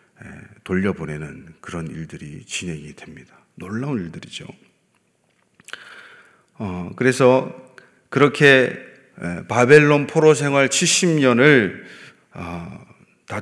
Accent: native